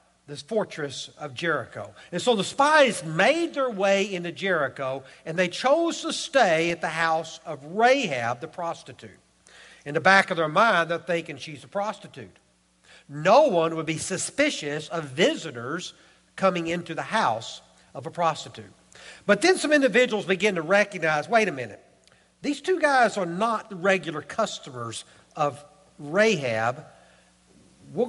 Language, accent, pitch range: English, American, 160-230 Hz